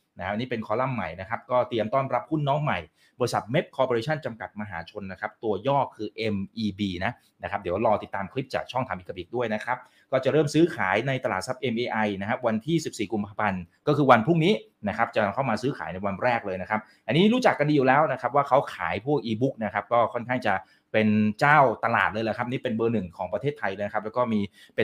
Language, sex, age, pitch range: Thai, male, 30-49, 100-130 Hz